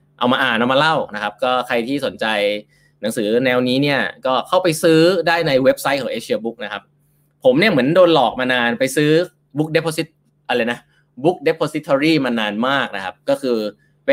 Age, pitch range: 20-39, 120-160 Hz